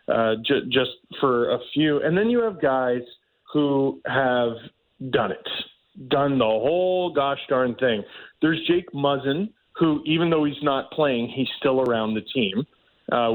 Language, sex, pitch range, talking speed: English, male, 120-165 Hz, 160 wpm